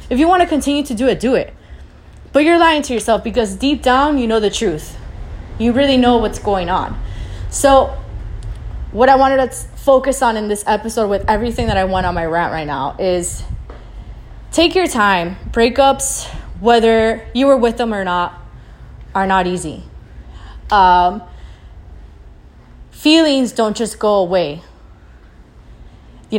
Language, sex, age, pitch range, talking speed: English, female, 20-39, 185-245 Hz, 160 wpm